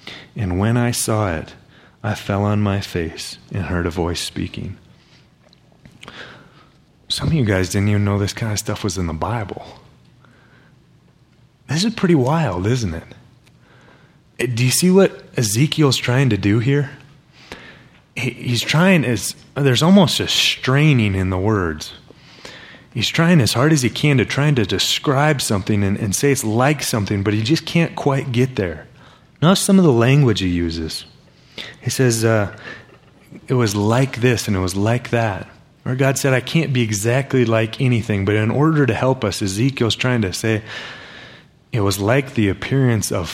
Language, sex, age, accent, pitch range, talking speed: English, male, 30-49, American, 100-135 Hz, 170 wpm